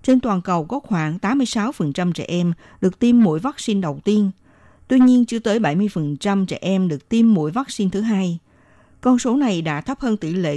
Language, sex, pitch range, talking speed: Vietnamese, female, 170-230 Hz, 200 wpm